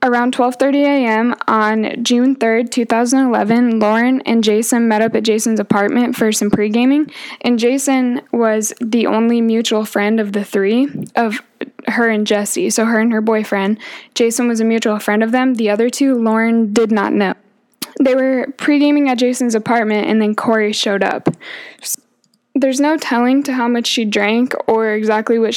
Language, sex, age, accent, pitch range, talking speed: English, female, 10-29, American, 215-250 Hz, 170 wpm